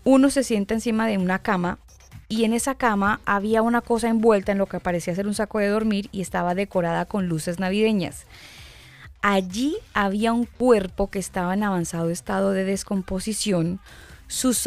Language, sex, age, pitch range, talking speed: Spanish, female, 10-29, 180-220 Hz, 170 wpm